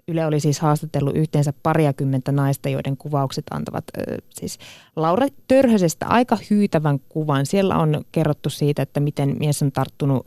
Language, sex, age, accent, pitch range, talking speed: Finnish, female, 30-49, native, 140-175 Hz, 145 wpm